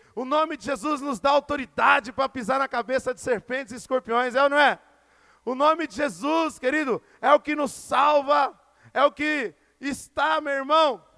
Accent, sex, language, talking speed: Brazilian, male, Portuguese, 190 wpm